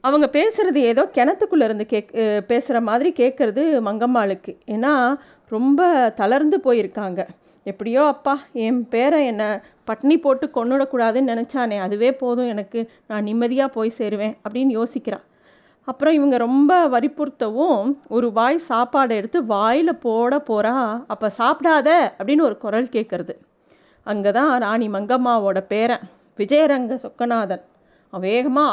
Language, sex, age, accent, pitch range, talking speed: Tamil, female, 30-49, native, 225-295 Hz, 120 wpm